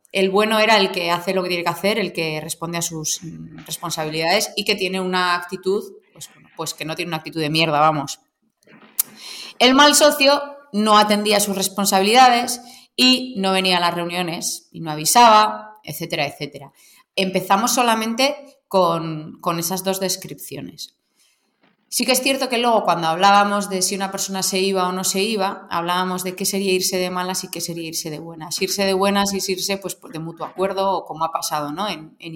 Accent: Spanish